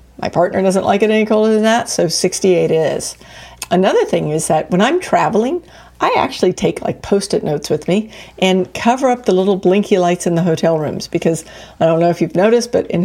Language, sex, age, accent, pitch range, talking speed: English, female, 50-69, American, 160-205 Hz, 215 wpm